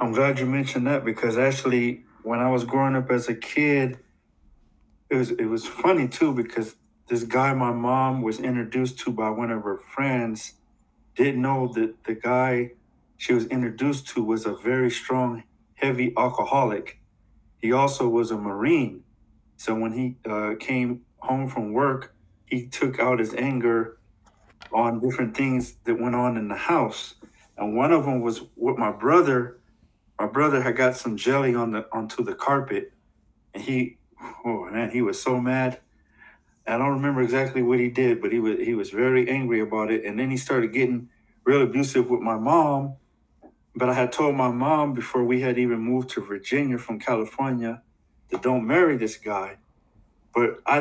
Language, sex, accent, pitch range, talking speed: English, male, American, 115-130 Hz, 175 wpm